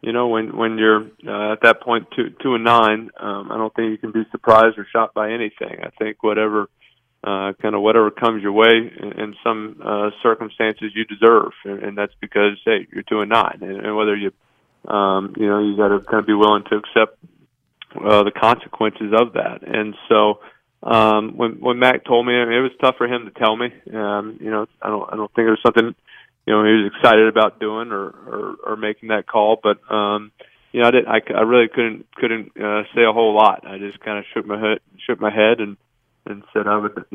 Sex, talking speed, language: male, 230 wpm, English